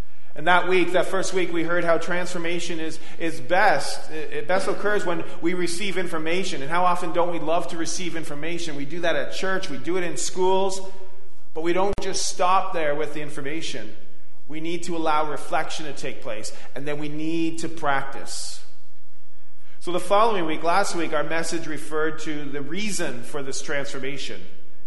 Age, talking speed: 30-49, 185 wpm